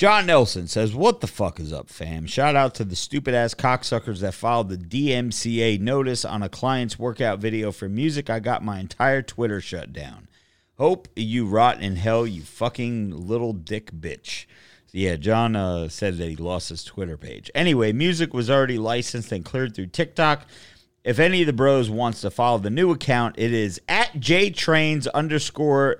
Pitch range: 95-130 Hz